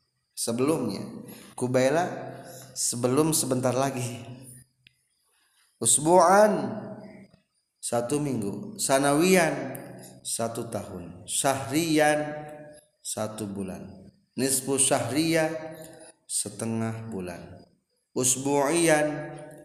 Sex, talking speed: male, 60 wpm